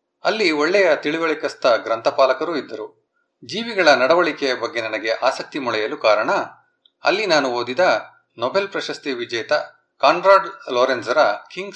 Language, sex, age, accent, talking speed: Kannada, male, 30-49, native, 105 wpm